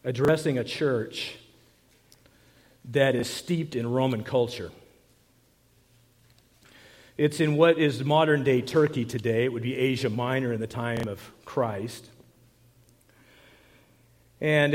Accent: American